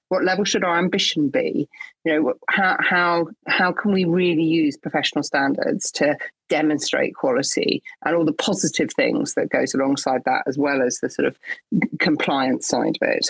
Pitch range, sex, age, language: 150-180 Hz, female, 40-59, English